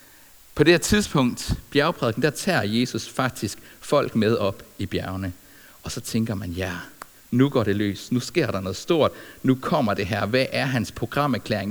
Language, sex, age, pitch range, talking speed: Danish, male, 60-79, 105-135 Hz, 180 wpm